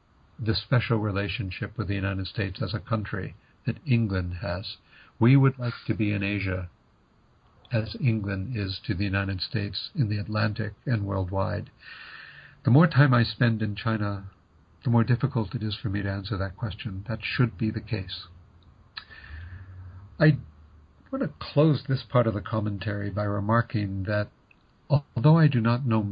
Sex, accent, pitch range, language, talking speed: male, American, 100-120 Hz, English, 165 wpm